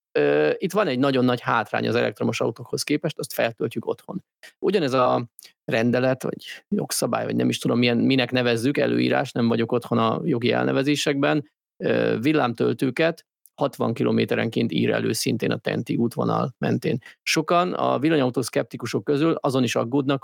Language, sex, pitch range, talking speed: Hungarian, male, 115-145 Hz, 145 wpm